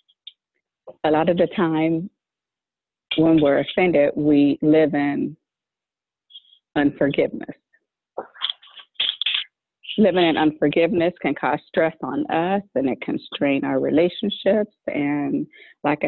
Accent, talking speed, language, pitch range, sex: American, 105 wpm, English, 150-200 Hz, female